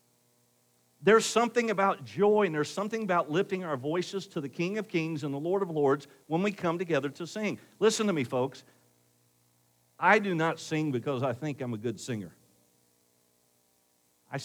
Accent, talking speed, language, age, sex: American, 180 wpm, English, 50-69, male